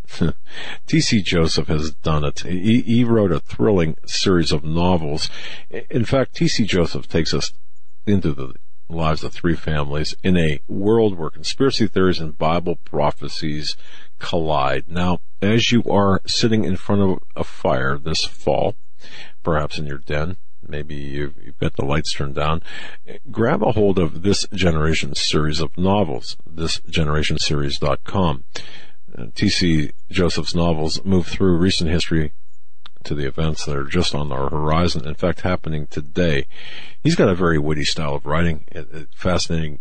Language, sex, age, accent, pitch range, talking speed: English, male, 50-69, American, 75-95 Hz, 150 wpm